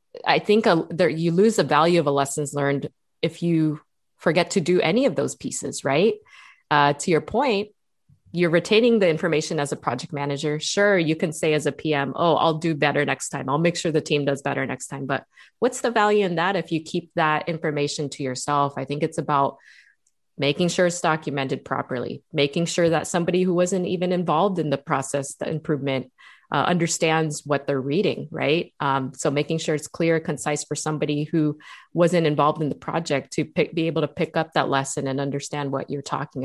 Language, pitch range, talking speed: English, 140-170 Hz, 200 wpm